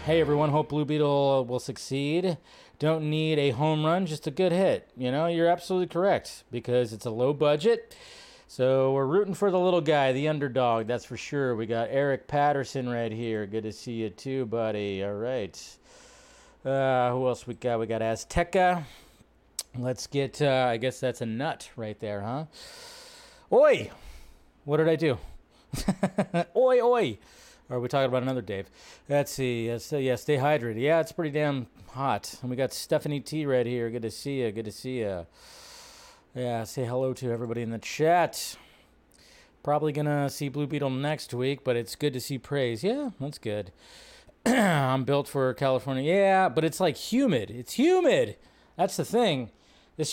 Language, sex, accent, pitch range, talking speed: English, male, American, 125-170 Hz, 180 wpm